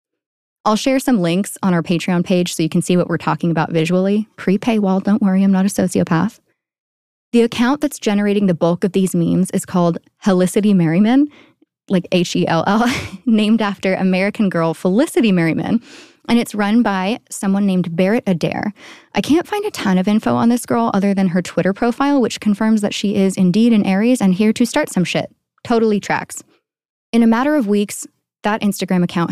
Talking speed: 190 wpm